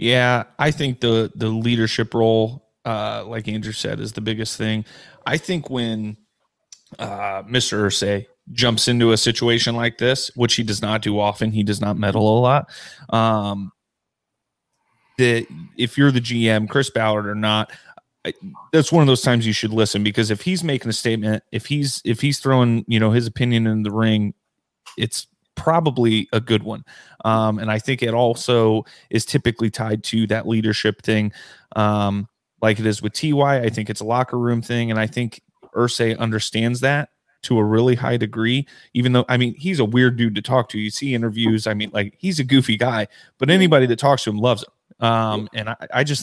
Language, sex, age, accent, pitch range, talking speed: English, male, 30-49, American, 110-130 Hz, 195 wpm